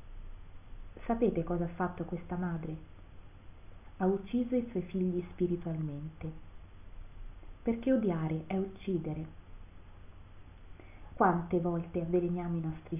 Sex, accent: female, native